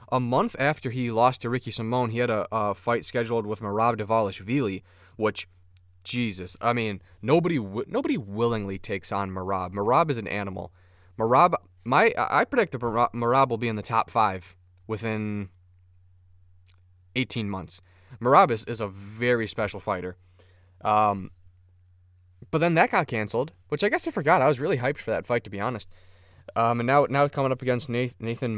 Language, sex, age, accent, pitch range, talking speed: English, male, 20-39, American, 90-120 Hz, 170 wpm